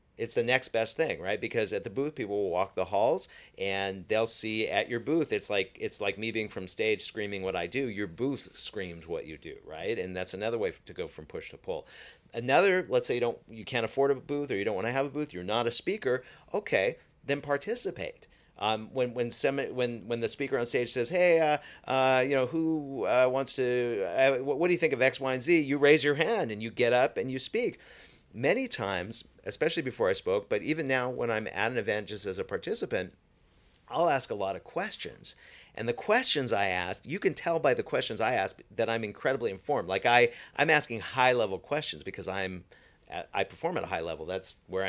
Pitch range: 115-160 Hz